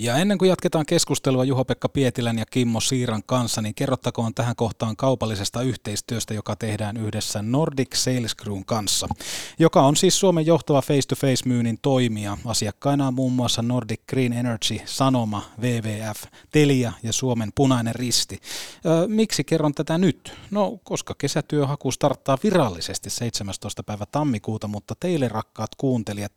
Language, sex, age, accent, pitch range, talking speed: Finnish, male, 30-49, native, 110-145 Hz, 140 wpm